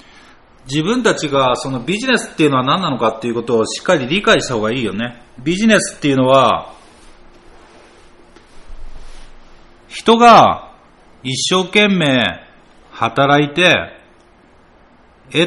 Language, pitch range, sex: Japanese, 110-160 Hz, male